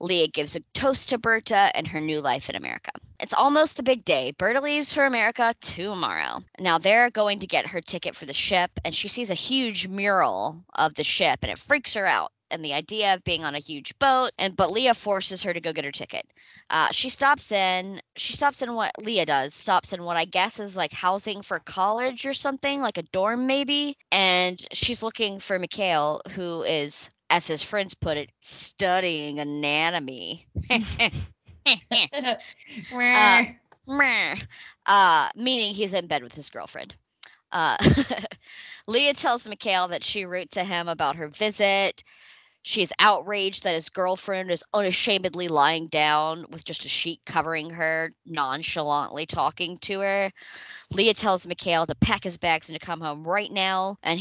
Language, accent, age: English, American, 20-39